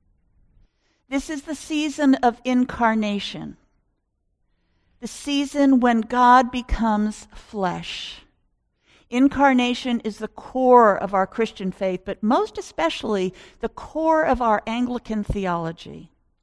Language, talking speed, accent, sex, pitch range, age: English, 105 wpm, American, female, 195-250 Hz, 50-69